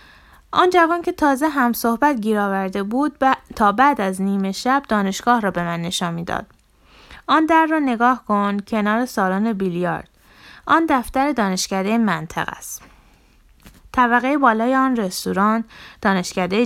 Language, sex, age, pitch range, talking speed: Persian, female, 20-39, 180-250 Hz, 140 wpm